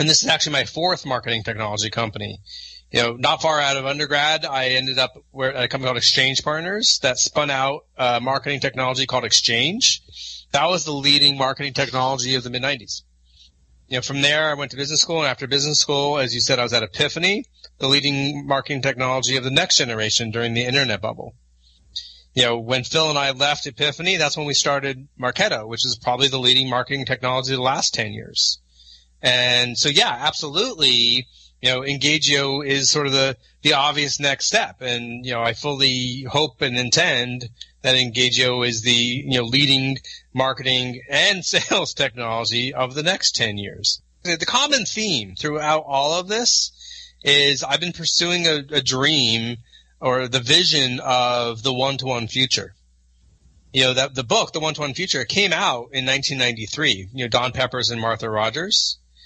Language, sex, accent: English, male, American